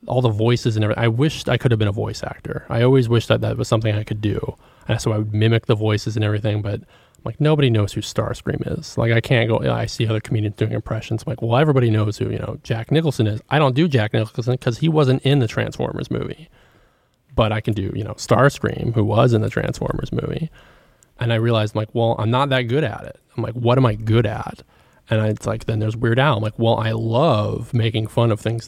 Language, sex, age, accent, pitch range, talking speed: English, male, 20-39, American, 110-130 Hz, 255 wpm